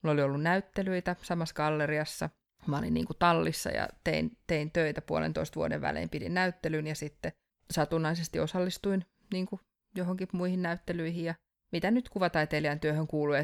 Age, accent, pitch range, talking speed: 20-39, native, 145-170 Hz, 155 wpm